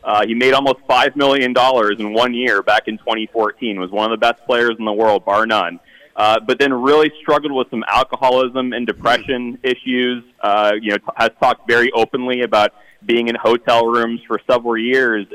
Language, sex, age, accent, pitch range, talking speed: English, male, 30-49, American, 110-125 Hz, 195 wpm